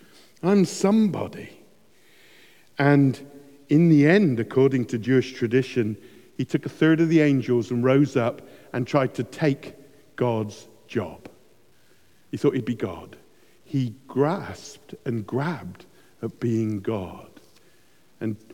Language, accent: English, British